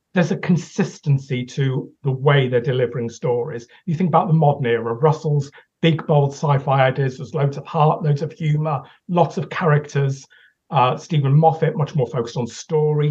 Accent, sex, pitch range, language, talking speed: British, male, 140-170 Hz, English, 175 wpm